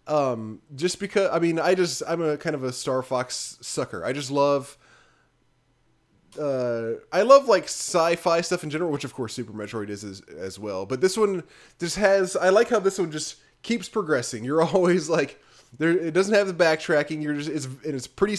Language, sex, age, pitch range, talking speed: English, male, 20-39, 120-160 Hz, 200 wpm